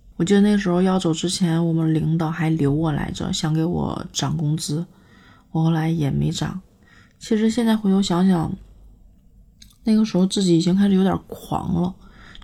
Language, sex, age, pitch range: Chinese, female, 20-39, 170-205 Hz